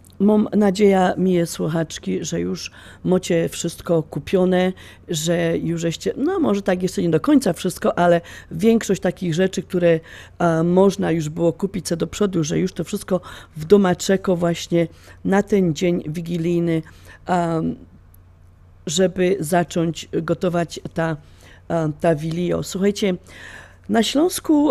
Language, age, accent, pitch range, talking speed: Polish, 40-59, native, 165-185 Hz, 135 wpm